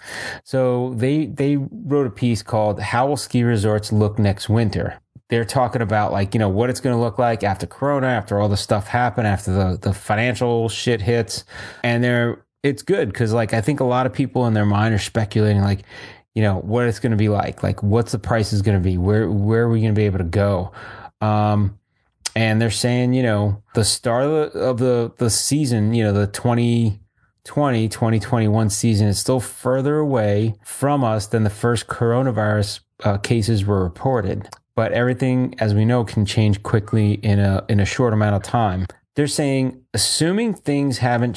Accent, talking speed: American, 200 wpm